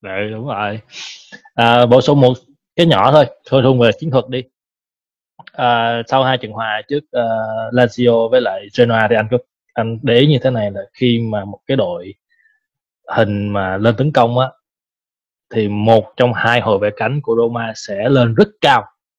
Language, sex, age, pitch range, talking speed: Vietnamese, male, 20-39, 110-140 Hz, 190 wpm